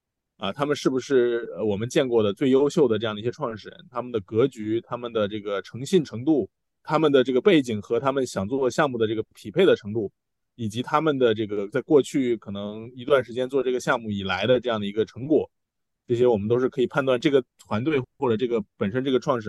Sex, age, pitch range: male, 20-39, 105-135 Hz